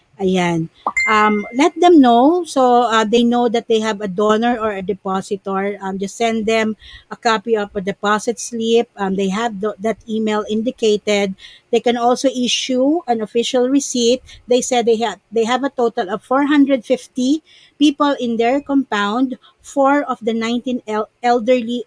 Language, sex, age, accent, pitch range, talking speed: Filipino, female, 50-69, native, 205-245 Hz, 165 wpm